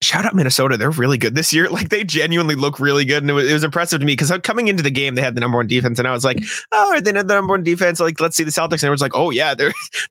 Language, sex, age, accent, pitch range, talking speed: English, male, 20-39, American, 130-170 Hz, 330 wpm